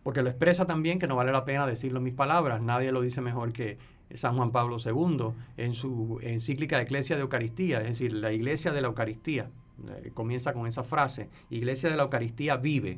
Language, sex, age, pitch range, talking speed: Spanish, male, 50-69, 115-165 Hz, 210 wpm